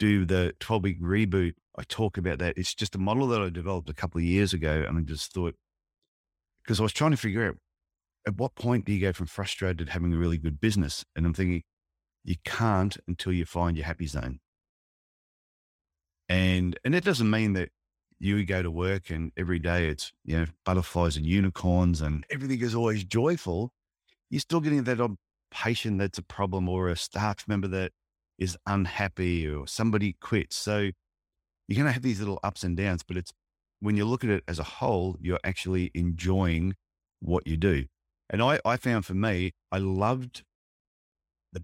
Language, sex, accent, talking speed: English, male, Australian, 190 wpm